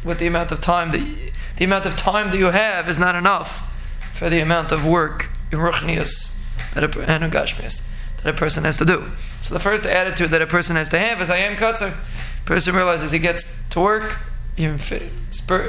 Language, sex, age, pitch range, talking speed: English, male, 20-39, 160-185 Hz, 205 wpm